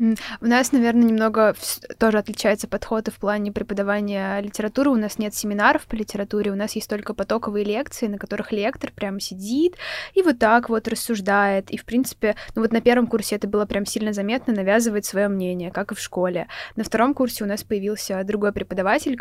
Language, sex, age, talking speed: Russian, female, 20-39, 190 wpm